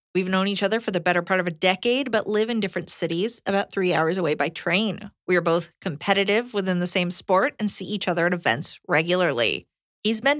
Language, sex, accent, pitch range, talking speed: English, female, American, 175-235 Hz, 225 wpm